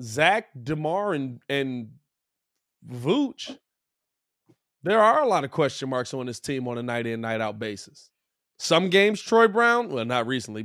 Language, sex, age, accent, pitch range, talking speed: English, male, 20-39, American, 145-195 Hz, 150 wpm